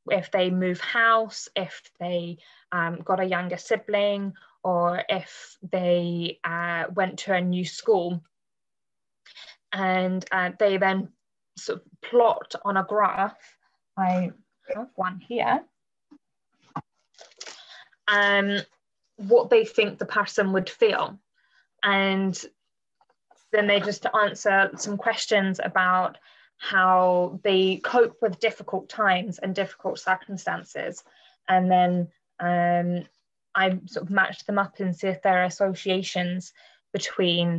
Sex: female